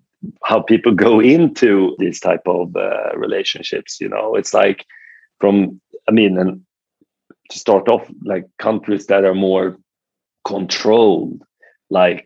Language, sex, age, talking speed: English, male, 40-59, 130 wpm